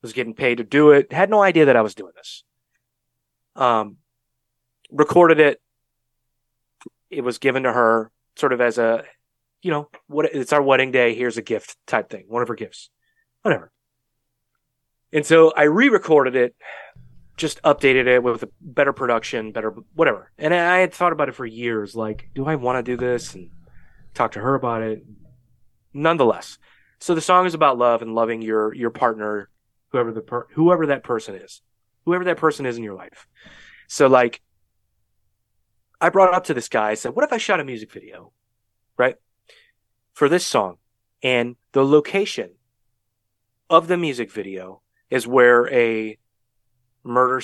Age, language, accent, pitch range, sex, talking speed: 30-49, English, American, 110-140 Hz, male, 175 wpm